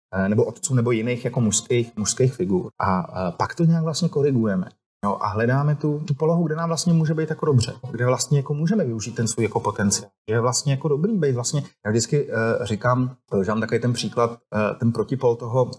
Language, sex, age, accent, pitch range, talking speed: Czech, male, 30-49, native, 115-145 Hz, 215 wpm